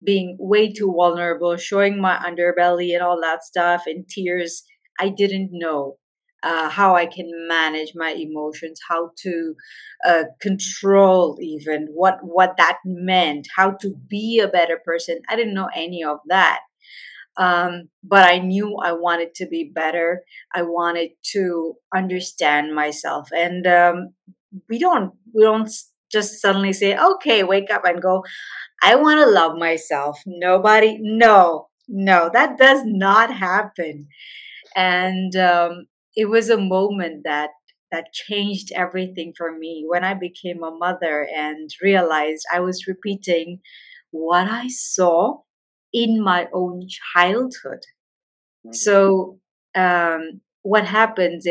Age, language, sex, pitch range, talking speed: 30-49, English, female, 170-200 Hz, 135 wpm